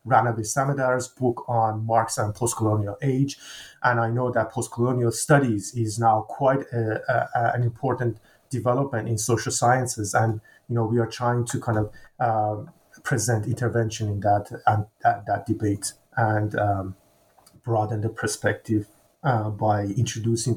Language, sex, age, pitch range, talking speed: English, male, 30-49, 110-125 Hz, 150 wpm